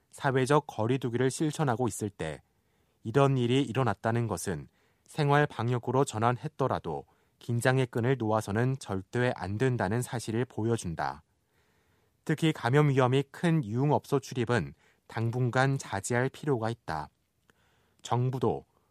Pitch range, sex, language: 105-135 Hz, male, Korean